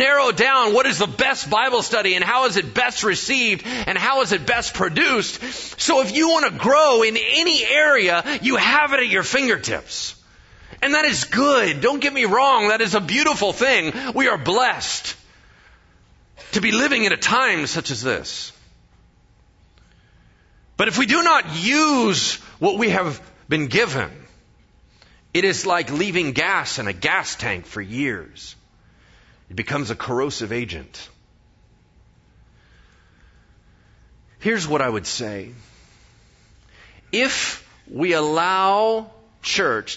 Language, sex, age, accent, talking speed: English, male, 40-59, American, 145 wpm